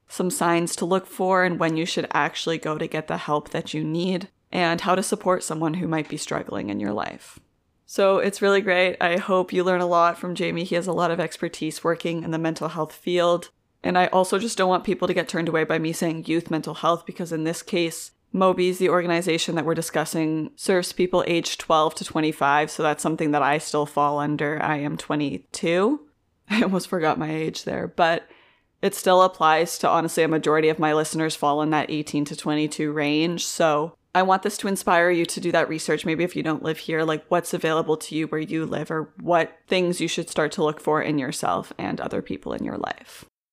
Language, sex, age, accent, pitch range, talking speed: English, female, 20-39, American, 155-185 Hz, 225 wpm